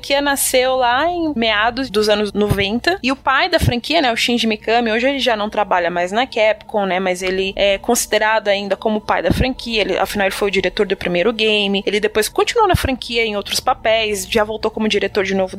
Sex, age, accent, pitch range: female, 20-39, Brazilian, 205-260 Hz